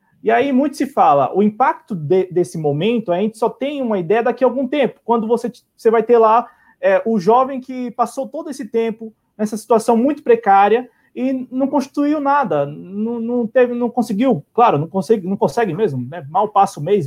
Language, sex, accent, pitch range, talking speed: Portuguese, male, Brazilian, 180-235 Hz, 205 wpm